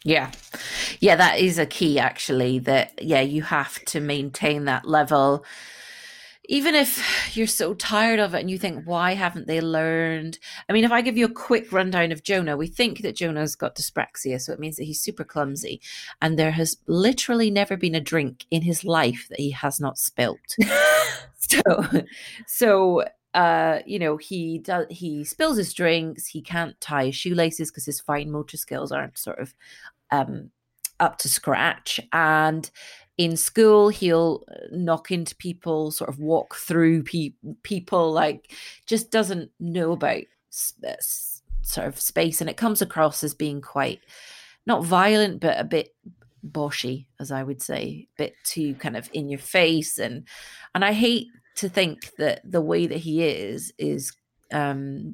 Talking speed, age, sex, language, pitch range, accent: 170 wpm, 30-49, female, English, 145-180 Hz, British